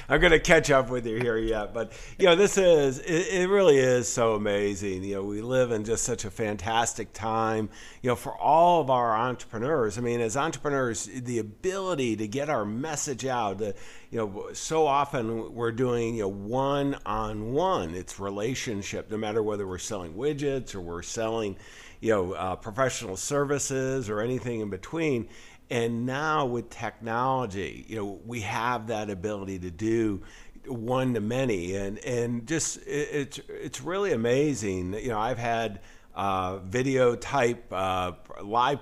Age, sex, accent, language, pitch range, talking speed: 50-69, male, American, English, 105-135 Hz, 170 wpm